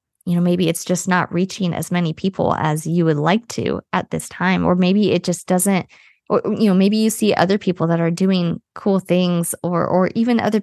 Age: 20-39